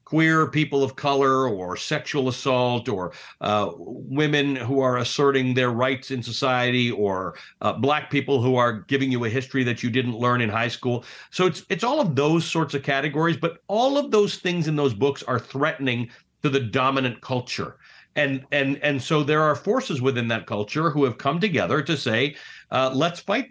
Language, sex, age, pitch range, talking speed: English, male, 50-69, 120-155 Hz, 195 wpm